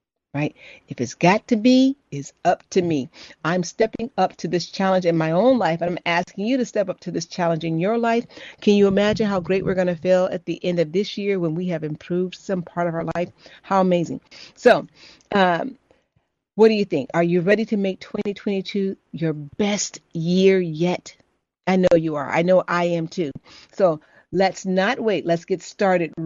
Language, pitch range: English, 175-210 Hz